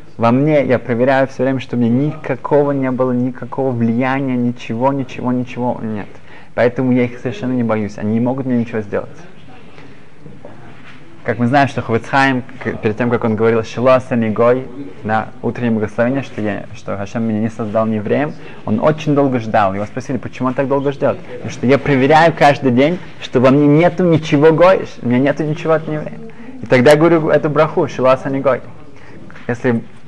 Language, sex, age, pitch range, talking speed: Russian, male, 20-39, 115-140 Hz, 170 wpm